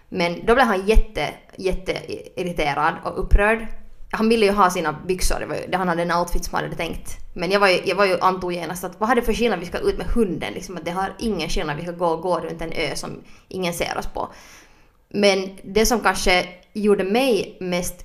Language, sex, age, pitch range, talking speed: Swedish, female, 20-39, 170-205 Hz, 230 wpm